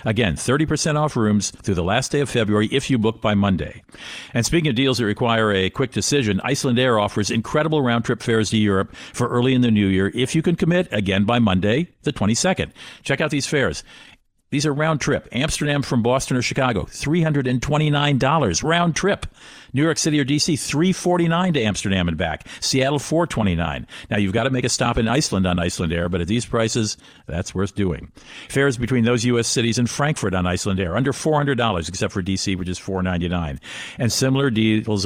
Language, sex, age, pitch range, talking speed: English, male, 50-69, 100-140 Hz, 195 wpm